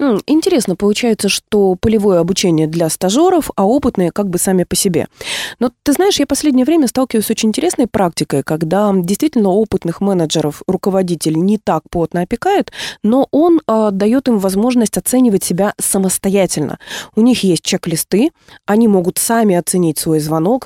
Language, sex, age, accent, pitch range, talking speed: Russian, female, 20-39, native, 165-225 Hz, 155 wpm